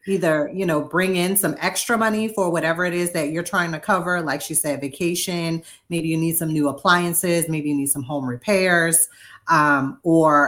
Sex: female